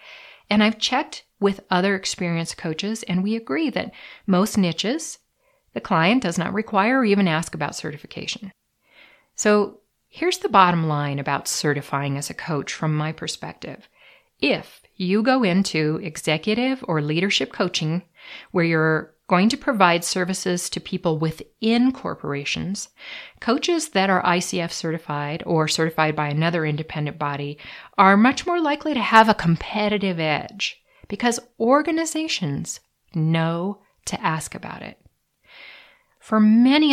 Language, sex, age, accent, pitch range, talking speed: English, female, 50-69, American, 160-225 Hz, 135 wpm